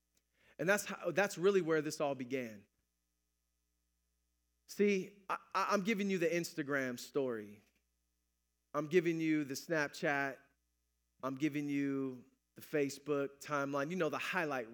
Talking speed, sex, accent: 120 wpm, male, American